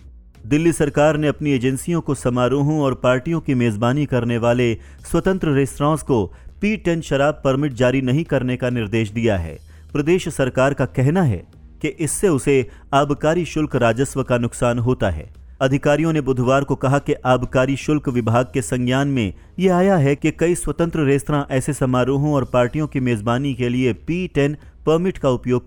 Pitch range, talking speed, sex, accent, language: 120-145 Hz, 115 wpm, male, Indian, English